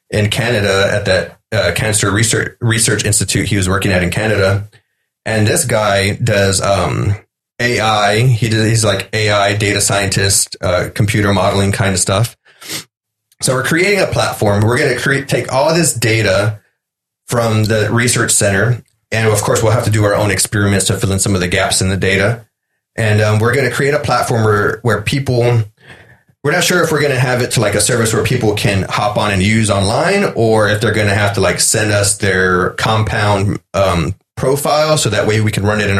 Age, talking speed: 30-49, 210 wpm